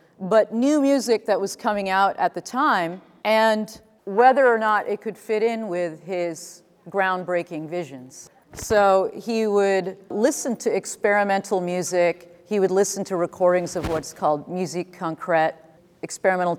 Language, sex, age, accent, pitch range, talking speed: English, female, 40-59, American, 160-200 Hz, 145 wpm